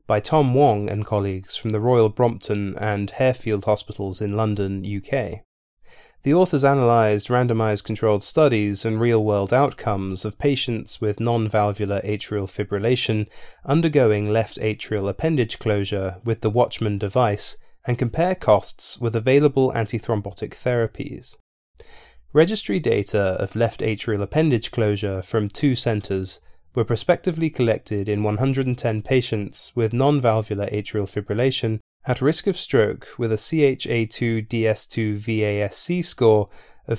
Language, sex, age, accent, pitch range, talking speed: English, male, 20-39, British, 105-130 Hz, 120 wpm